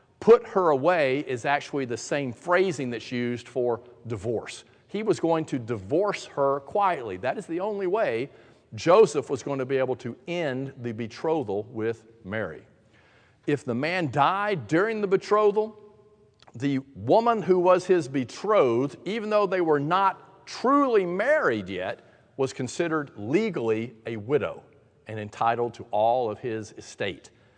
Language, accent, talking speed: English, American, 150 wpm